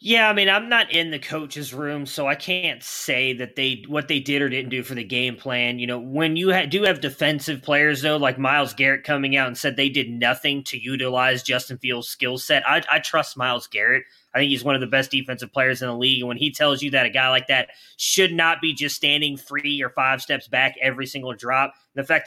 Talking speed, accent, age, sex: 250 wpm, American, 20-39, male